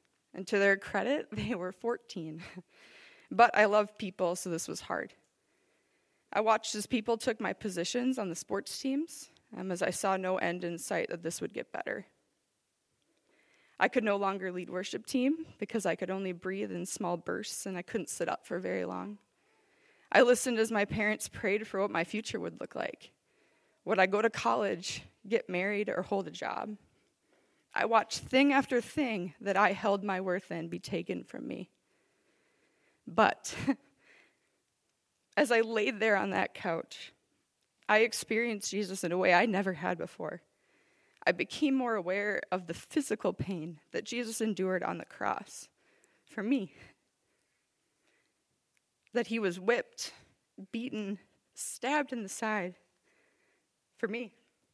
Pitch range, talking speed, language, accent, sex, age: 185-235 Hz, 160 wpm, English, American, female, 20-39